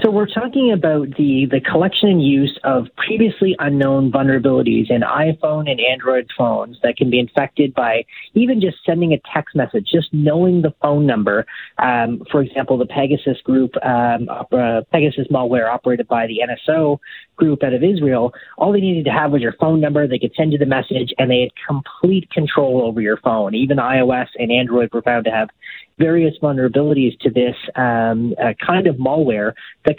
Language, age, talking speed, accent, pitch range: English, 30-49, 185 wpm, American, 125-155 Hz